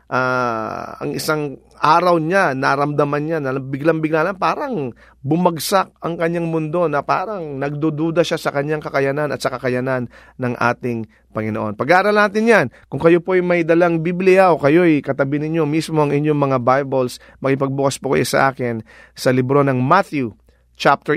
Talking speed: 160 wpm